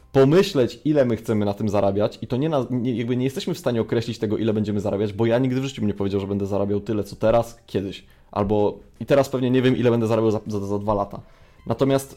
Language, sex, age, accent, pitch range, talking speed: Polish, male, 20-39, native, 105-130 Hz, 255 wpm